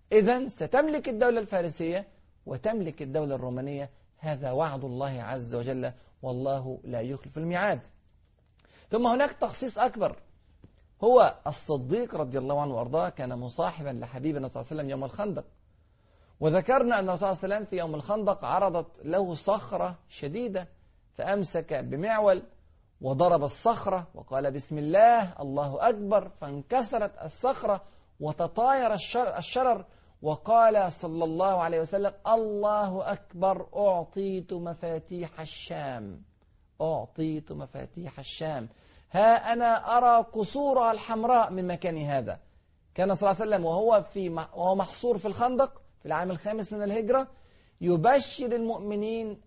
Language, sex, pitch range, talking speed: Arabic, male, 145-210 Hz, 125 wpm